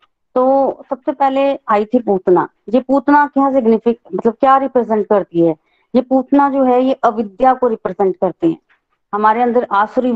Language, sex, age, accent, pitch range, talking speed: Hindi, female, 30-49, native, 200-250 Hz, 165 wpm